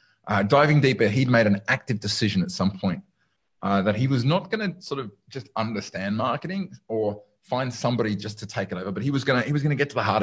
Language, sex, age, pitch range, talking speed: English, male, 30-49, 105-145 Hz, 235 wpm